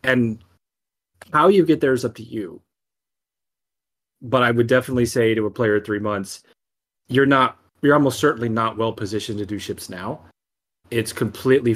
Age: 30-49